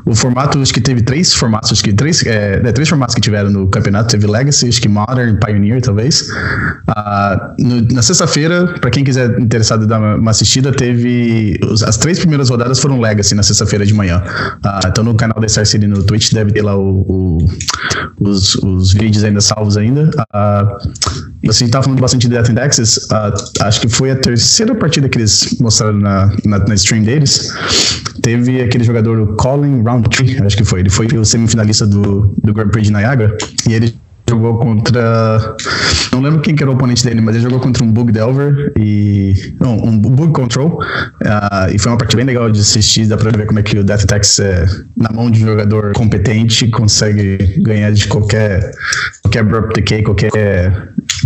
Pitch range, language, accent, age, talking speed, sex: 105-125 Hz, Portuguese, Brazilian, 20-39, 195 wpm, male